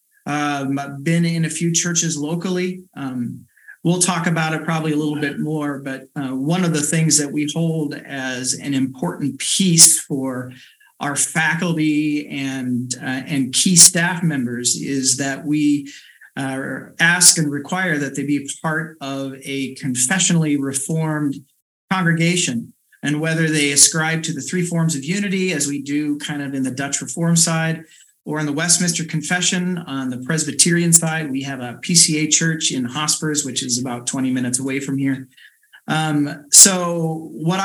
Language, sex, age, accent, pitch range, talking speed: English, male, 40-59, American, 140-170 Hz, 165 wpm